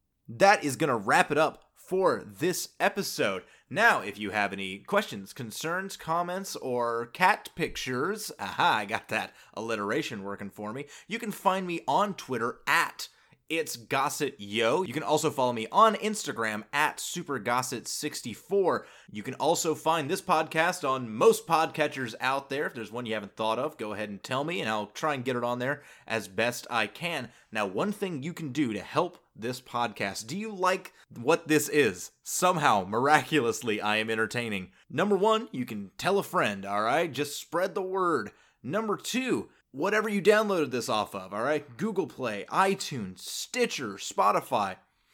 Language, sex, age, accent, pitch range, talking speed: English, male, 30-49, American, 115-180 Hz, 175 wpm